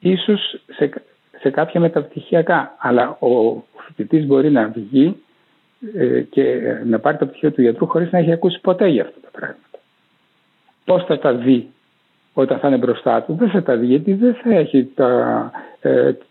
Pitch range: 110-155 Hz